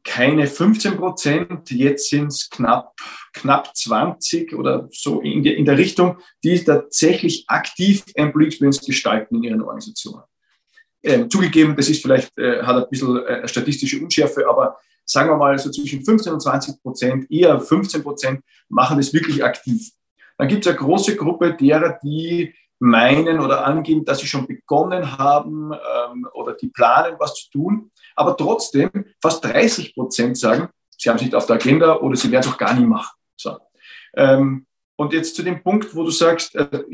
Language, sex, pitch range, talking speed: German, male, 140-185 Hz, 175 wpm